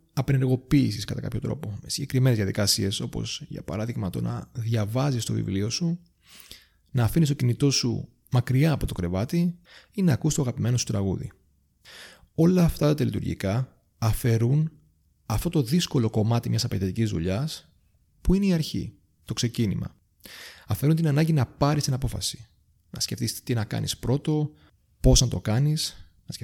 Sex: male